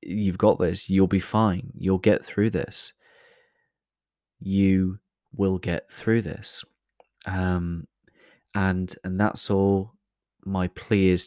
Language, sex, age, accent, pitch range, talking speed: English, male, 20-39, British, 85-105 Hz, 125 wpm